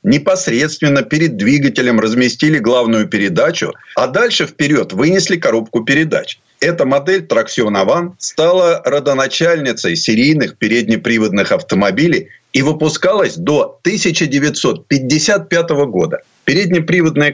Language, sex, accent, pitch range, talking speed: Russian, male, native, 125-185 Hz, 90 wpm